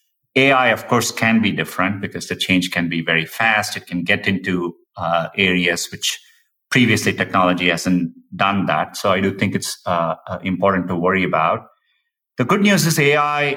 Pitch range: 100-130 Hz